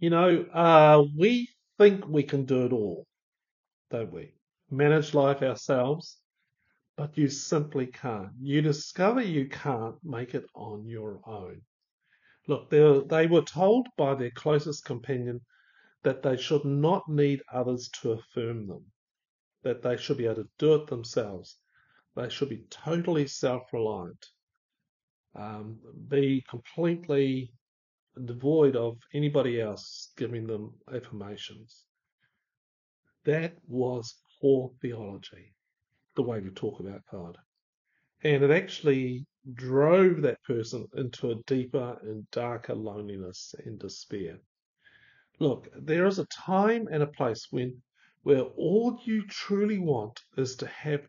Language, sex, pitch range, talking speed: English, male, 120-155 Hz, 130 wpm